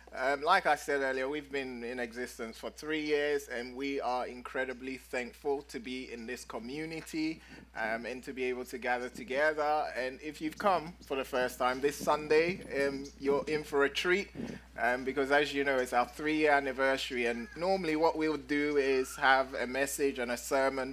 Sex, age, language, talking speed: male, 20-39, English, 195 wpm